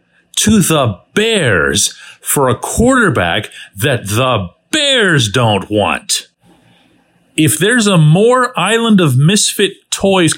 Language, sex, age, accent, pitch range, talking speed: English, male, 40-59, American, 125-200 Hz, 110 wpm